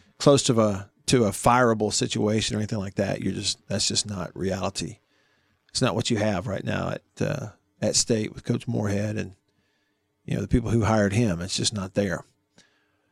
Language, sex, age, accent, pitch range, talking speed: English, male, 50-69, American, 105-140 Hz, 195 wpm